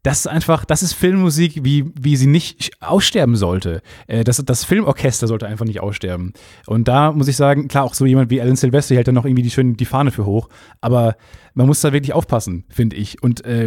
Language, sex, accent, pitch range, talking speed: German, male, German, 115-145 Hz, 220 wpm